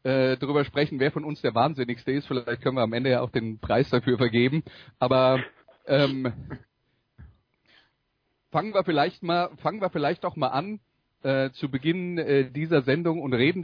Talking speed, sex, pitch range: 175 wpm, male, 125-150 Hz